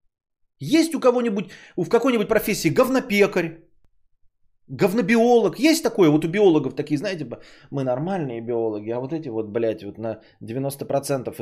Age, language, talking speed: 20-39, Bulgarian, 135 wpm